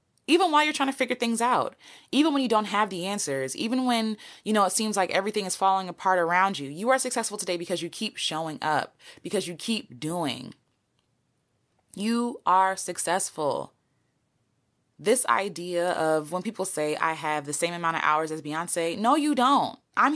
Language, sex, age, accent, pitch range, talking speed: English, female, 20-39, American, 165-235 Hz, 190 wpm